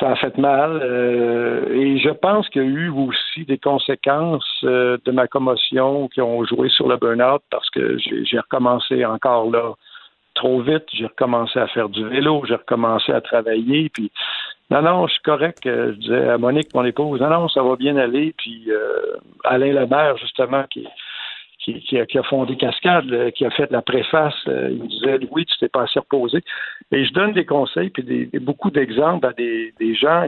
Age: 60-79